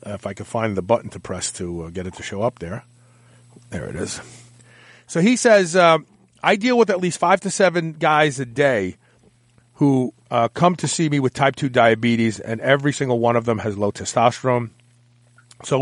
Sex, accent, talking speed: male, American, 200 wpm